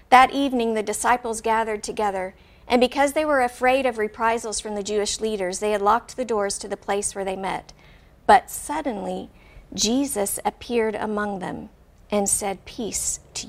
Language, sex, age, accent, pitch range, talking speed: English, female, 50-69, American, 210-245 Hz, 170 wpm